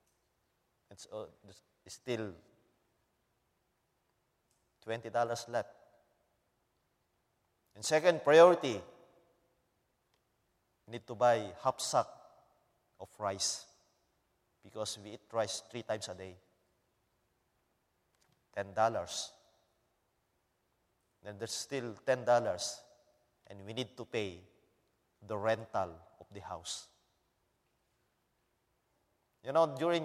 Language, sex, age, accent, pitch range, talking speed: English, male, 30-49, Filipino, 110-140 Hz, 85 wpm